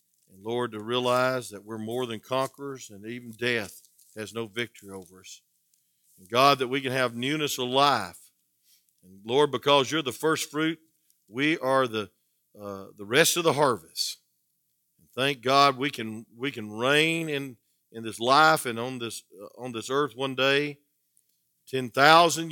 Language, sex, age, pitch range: English, male, 50-69, 105-145 Hz